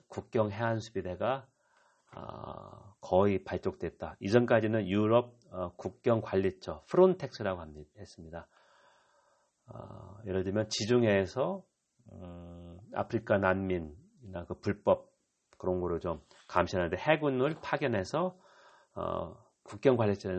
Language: Korean